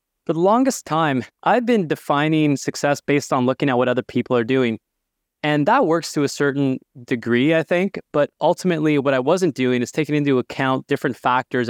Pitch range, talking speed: 125-155 Hz, 195 wpm